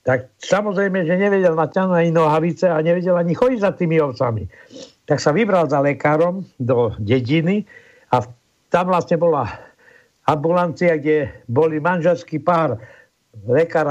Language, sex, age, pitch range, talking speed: Slovak, male, 60-79, 140-180 Hz, 140 wpm